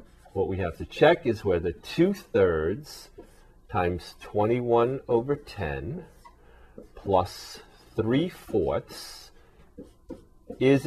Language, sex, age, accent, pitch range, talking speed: English, male, 40-59, American, 80-110 Hz, 90 wpm